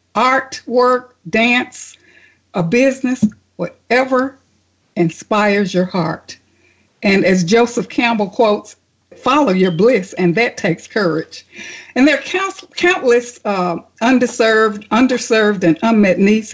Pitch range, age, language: 185-255 Hz, 60-79, English